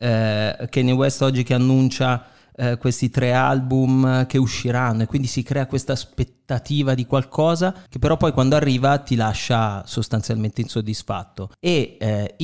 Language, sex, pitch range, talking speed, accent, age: Italian, male, 115-135 Hz, 150 wpm, native, 30-49